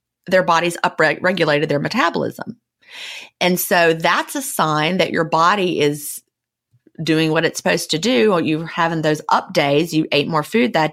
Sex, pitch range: female, 155-210 Hz